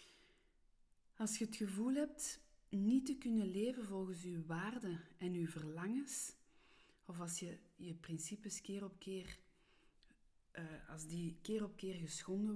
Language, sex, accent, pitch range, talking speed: Dutch, female, Dutch, 170-210 Hz, 145 wpm